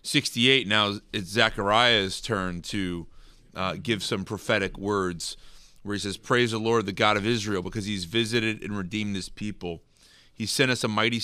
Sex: male